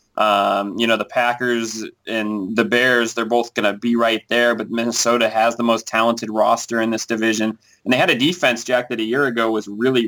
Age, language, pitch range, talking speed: 20-39, English, 115-135 Hz, 220 wpm